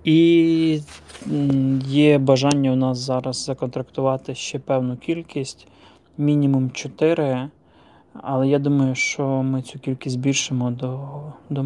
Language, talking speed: Russian, 115 wpm